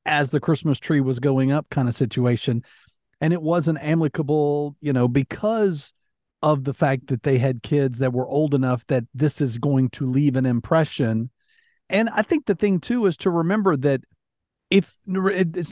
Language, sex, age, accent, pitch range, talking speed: English, male, 40-59, American, 135-175 Hz, 185 wpm